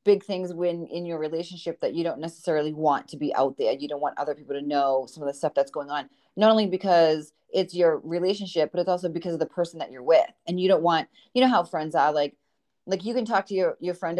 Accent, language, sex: American, English, female